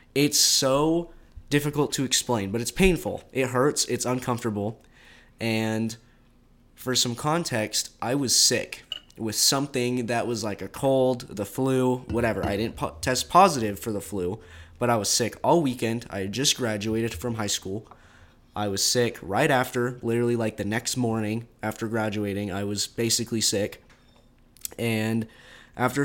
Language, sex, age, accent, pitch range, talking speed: English, male, 20-39, American, 105-125 Hz, 155 wpm